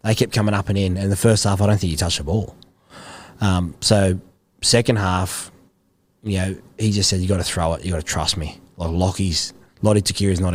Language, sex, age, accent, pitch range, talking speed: English, male, 20-39, Australian, 95-120 Hz, 240 wpm